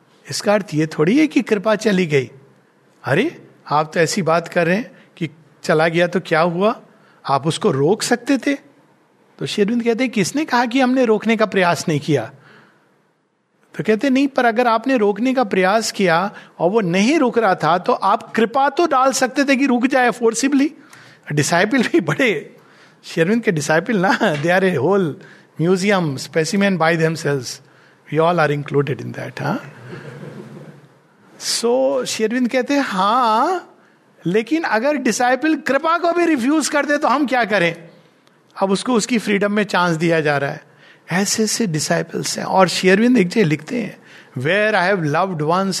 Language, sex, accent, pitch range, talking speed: Hindi, male, native, 160-240 Hz, 175 wpm